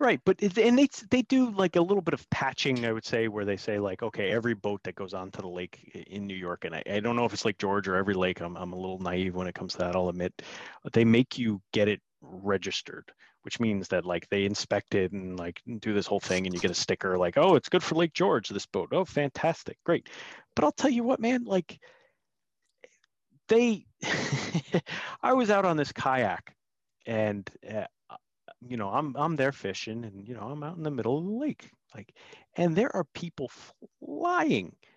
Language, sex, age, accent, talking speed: English, male, 30-49, American, 225 wpm